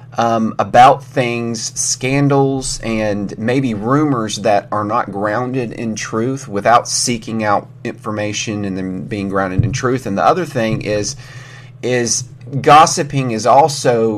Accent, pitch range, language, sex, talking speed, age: American, 110-135 Hz, English, male, 135 wpm, 30-49